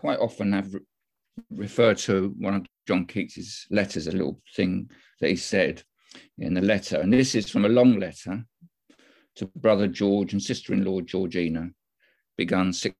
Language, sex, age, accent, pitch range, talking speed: English, male, 50-69, British, 95-115 Hz, 155 wpm